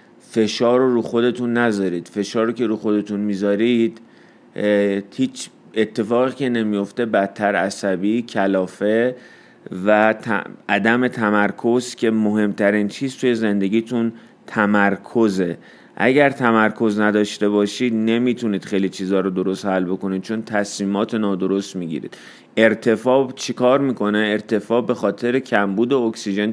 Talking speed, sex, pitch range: 120 wpm, male, 100-120 Hz